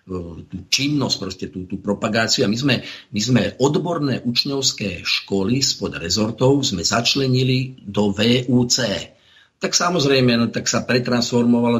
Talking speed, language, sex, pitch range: 130 wpm, Slovak, male, 100-120 Hz